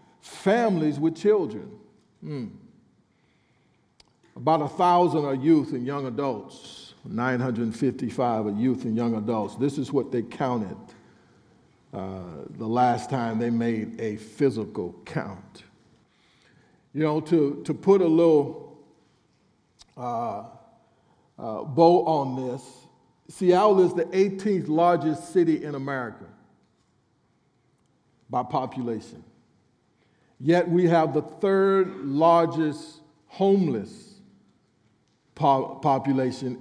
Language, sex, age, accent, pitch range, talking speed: English, male, 50-69, American, 130-170 Hz, 100 wpm